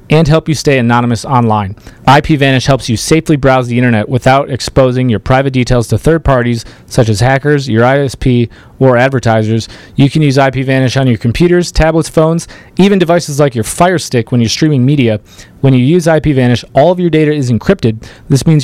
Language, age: English, 30-49